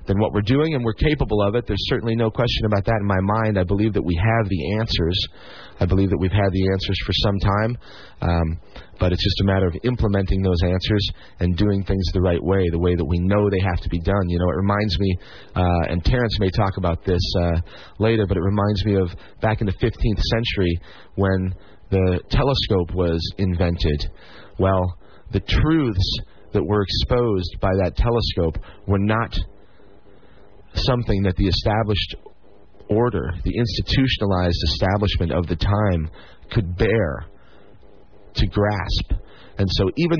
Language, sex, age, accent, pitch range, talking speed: English, male, 30-49, American, 90-110 Hz, 180 wpm